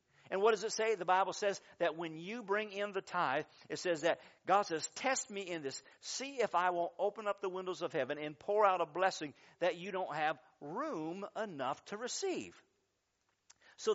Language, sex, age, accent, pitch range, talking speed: English, male, 50-69, American, 155-205 Hz, 210 wpm